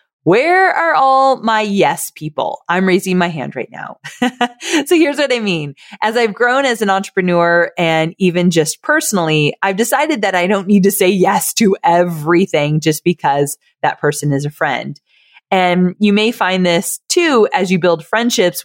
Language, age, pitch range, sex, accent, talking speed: English, 30-49, 155-210 Hz, female, American, 175 wpm